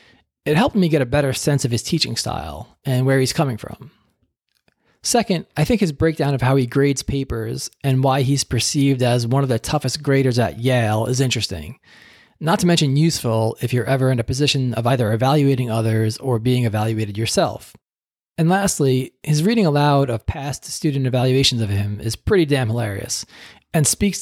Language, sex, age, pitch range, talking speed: English, male, 20-39, 120-150 Hz, 185 wpm